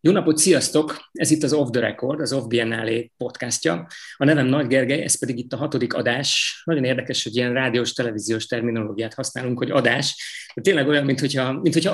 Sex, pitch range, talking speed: male, 115-145 Hz, 180 wpm